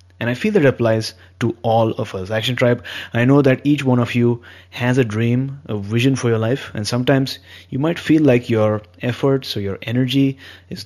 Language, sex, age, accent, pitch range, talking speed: English, male, 30-49, Indian, 105-130 Hz, 215 wpm